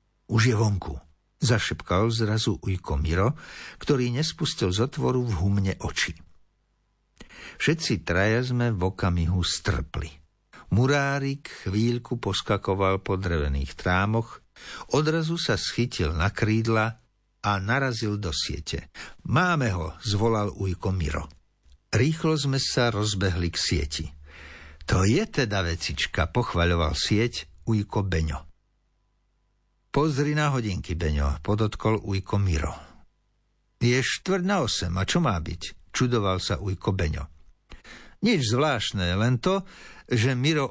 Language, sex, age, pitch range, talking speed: Slovak, male, 60-79, 90-125 Hz, 115 wpm